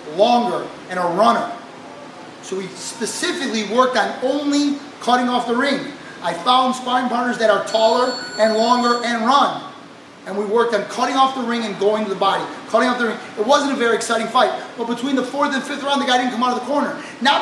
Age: 30-49